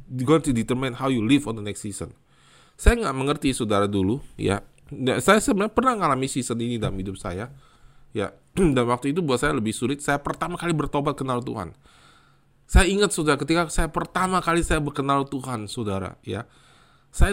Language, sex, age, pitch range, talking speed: Indonesian, male, 20-39, 135-175 Hz, 175 wpm